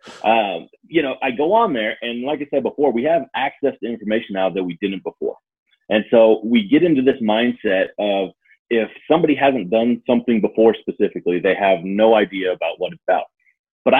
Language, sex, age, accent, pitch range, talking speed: English, male, 30-49, American, 95-120 Hz, 195 wpm